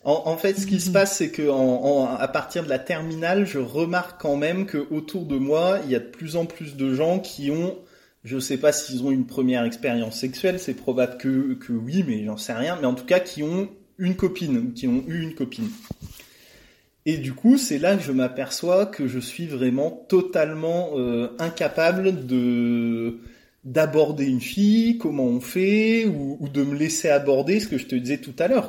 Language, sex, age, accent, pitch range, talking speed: French, male, 20-39, French, 130-190 Hz, 215 wpm